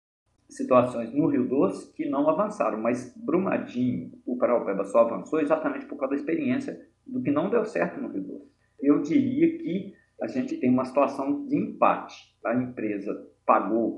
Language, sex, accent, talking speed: Portuguese, male, Brazilian, 165 wpm